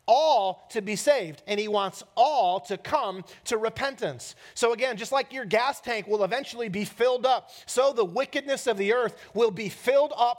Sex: male